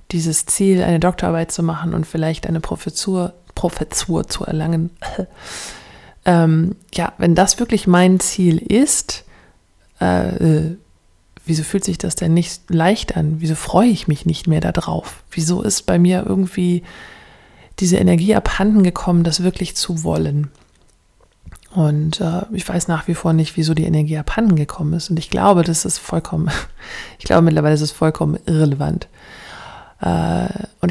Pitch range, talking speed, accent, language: 160-190 Hz, 150 wpm, German, German